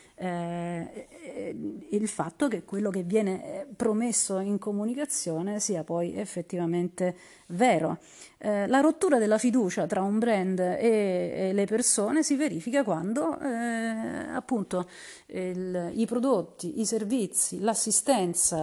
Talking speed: 115 wpm